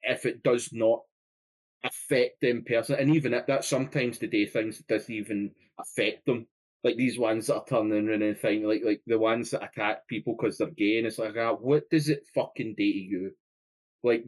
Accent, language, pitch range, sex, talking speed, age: British, English, 110-145 Hz, male, 205 wpm, 20-39